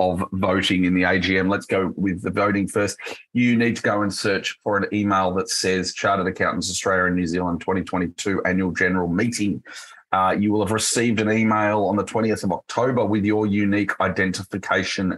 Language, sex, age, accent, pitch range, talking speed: English, male, 30-49, Australian, 95-110 Hz, 190 wpm